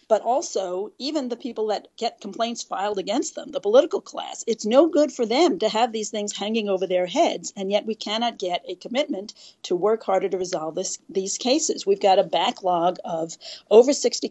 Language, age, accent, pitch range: English, 40-59, American, 195-275 Hz